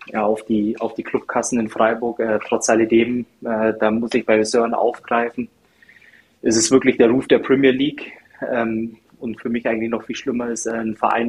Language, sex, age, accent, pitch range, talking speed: German, male, 20-39, German, 115-130 Hz, 200 wpm